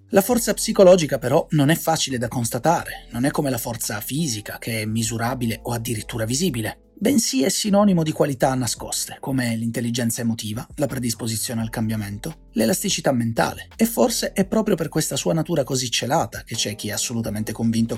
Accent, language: native, Italian